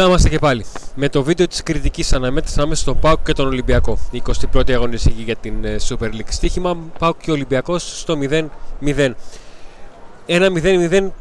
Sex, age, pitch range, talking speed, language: male, 20-39, 125-155 Hz, 165 wpm, Greek